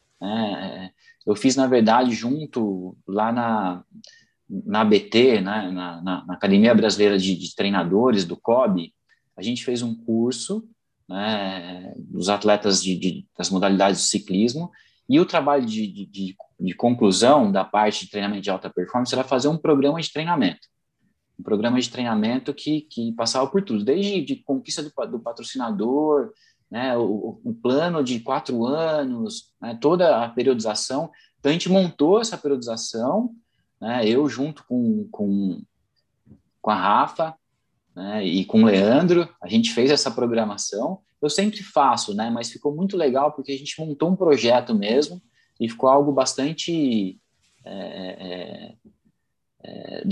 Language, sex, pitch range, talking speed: Portuguese, male, 110-160 Hz, 155 wpm